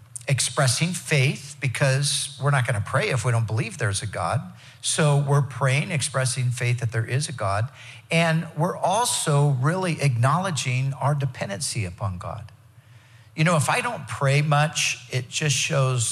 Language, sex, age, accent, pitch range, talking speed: English, male, 50-69, American, 120-145 Hz, 165 wpm